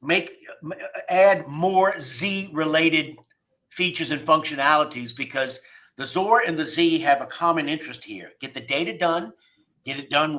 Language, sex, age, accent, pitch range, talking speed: English, male, 50-69, American, 140-225 Hz, 150 wpm